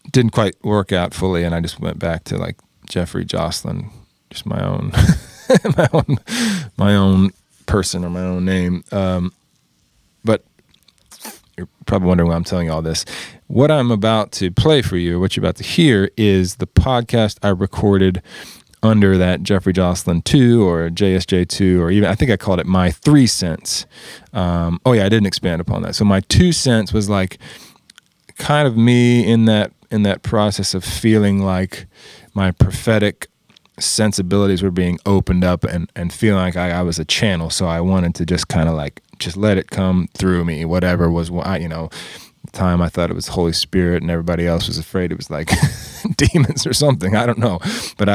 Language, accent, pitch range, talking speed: English, American, 90-110 Hz, 195 wpm